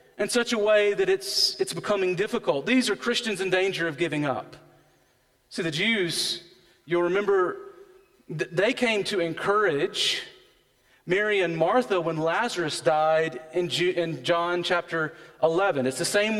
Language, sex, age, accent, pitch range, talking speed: English, male, 40-59, American, 130-210 Hz, 145 wpm